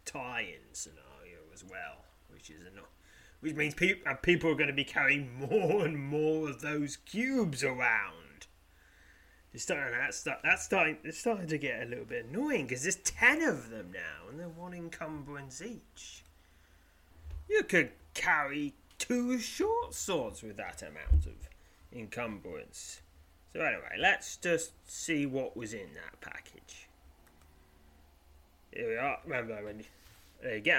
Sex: male